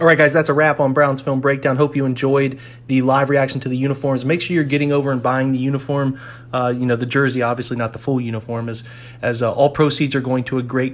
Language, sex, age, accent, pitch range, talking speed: English, male, 30-49, American, 125-140 Hz, 265 wpm